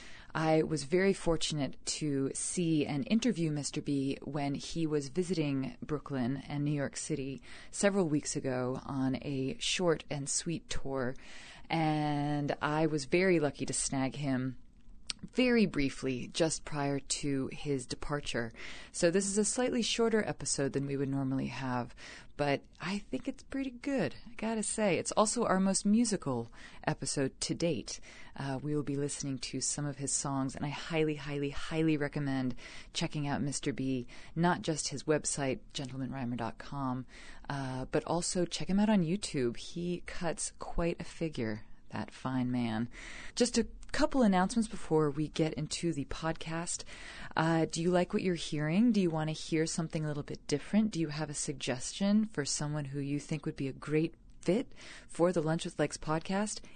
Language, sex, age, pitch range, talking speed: English, female, 30-49, 135-175 Hz, 170 wpm